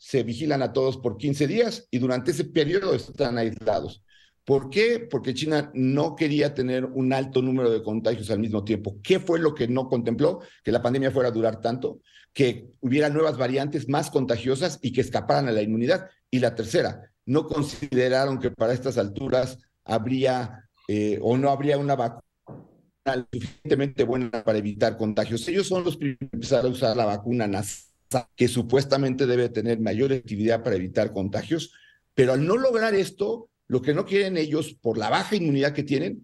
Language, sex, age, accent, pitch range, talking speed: Spanish, male, 50-69, Mexican, 115-155 Hz, 180 wpm